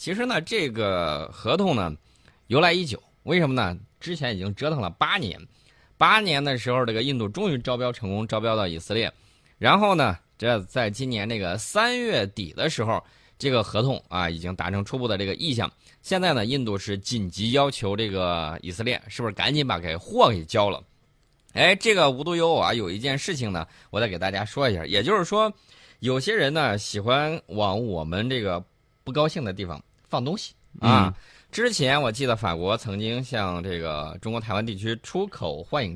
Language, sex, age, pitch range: Chinese, male, 20-39, 100-135 Hz